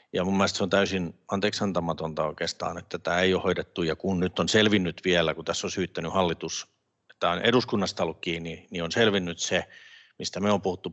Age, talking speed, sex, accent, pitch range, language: 50-69, 205 wpm, male, native, 85-100 Hz, Finnish